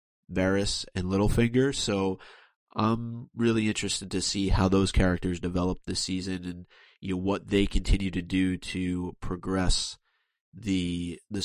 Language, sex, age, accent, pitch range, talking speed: English, male, 30-49, American, 90-100 Hz, 140 wpm